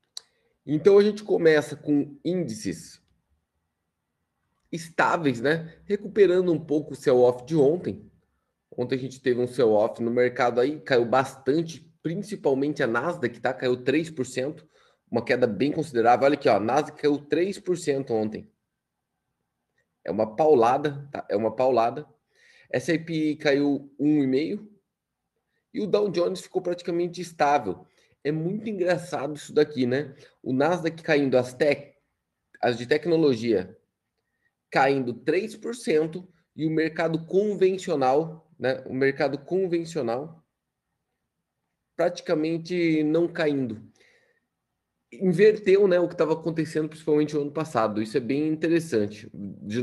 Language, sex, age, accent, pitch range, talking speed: Portuguese, male, 20-39, Brazilian, 130-170 Hz, 130 wpm